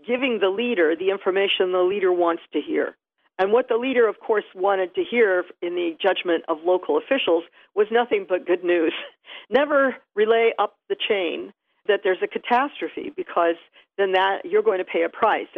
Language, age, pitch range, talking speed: English, 50-69, 180-275 Hz, 185 wpm